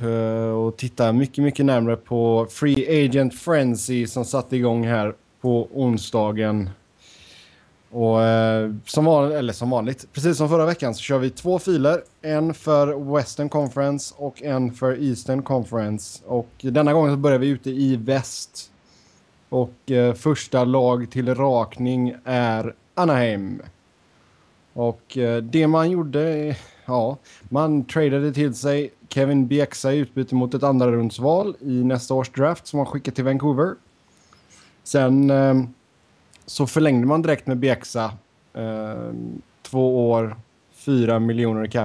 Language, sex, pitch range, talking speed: Swedish, male, 115-140 Hz, 135 wpm